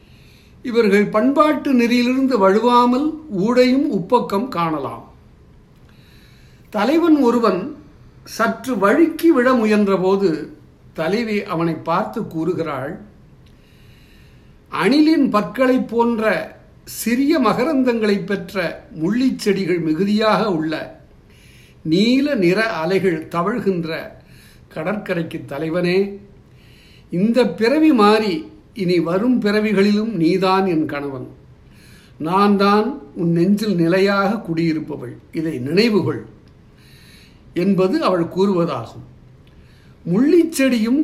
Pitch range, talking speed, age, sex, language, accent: 180-245 Hz, 80 wpm, 60-79, male, Tamil, native